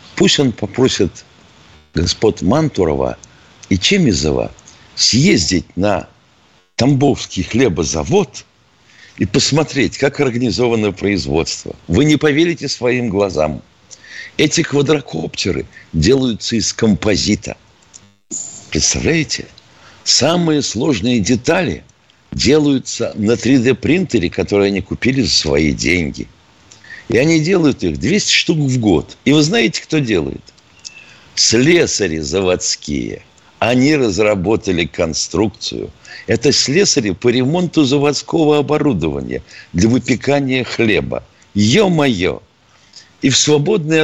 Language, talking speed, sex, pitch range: Russian, 95 wpm, male, 100-145 Hz